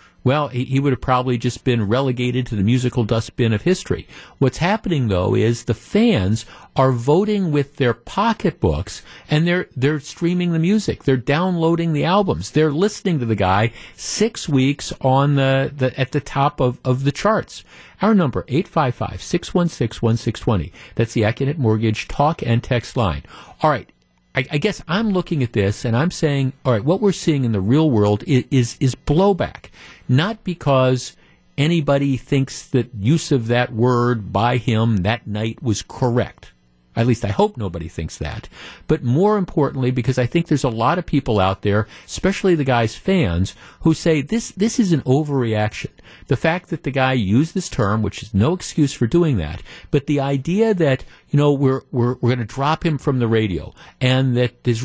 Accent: American